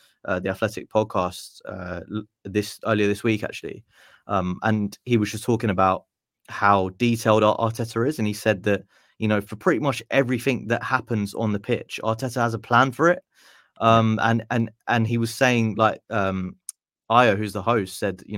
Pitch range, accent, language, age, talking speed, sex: 105-130 Hz, British, English, 20-39, 185 wpm, male